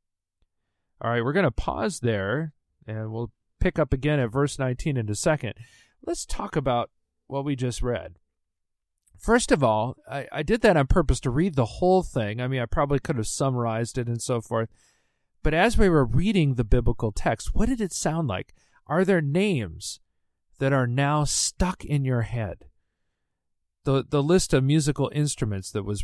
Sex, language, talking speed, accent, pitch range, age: male, English, 185 wpm, American, 115-155 Hz, 40-59